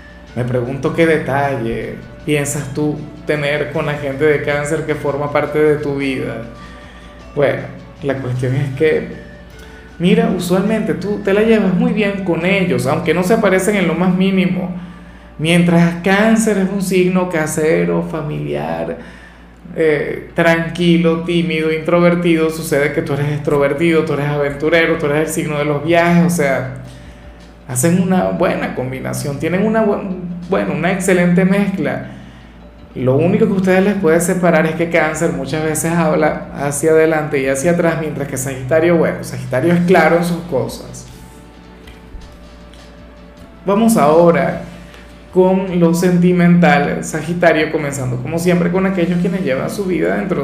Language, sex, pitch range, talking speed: Spanish, male, 140-180 Hz, 150 wpm